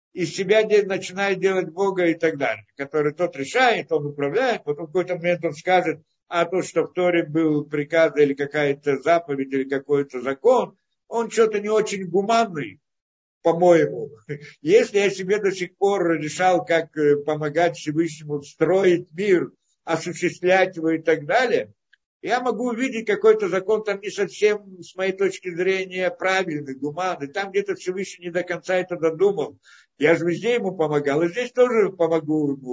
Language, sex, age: Russian, male, 60-79